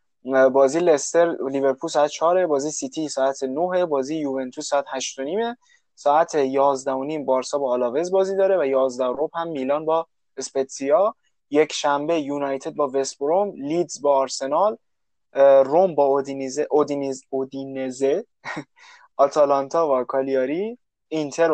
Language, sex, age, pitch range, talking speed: Persian, male, 20-39, 135-165 Hz, 140 wpm